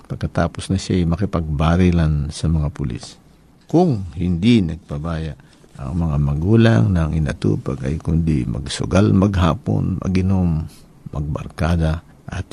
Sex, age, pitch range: male, 50-69, 80-100 Hz